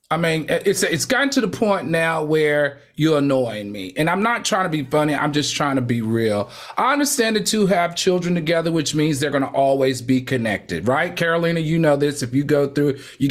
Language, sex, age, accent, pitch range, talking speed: English, male, 40-59, American, 145-215 Hz, 225 wpm